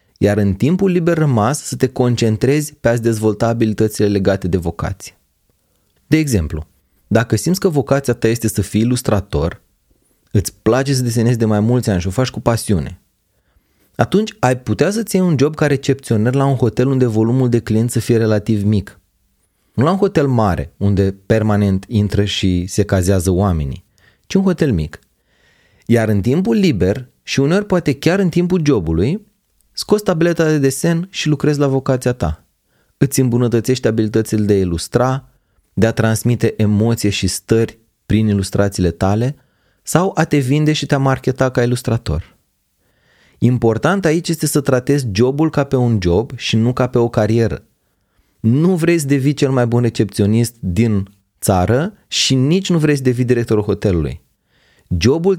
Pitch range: 105-140 Hz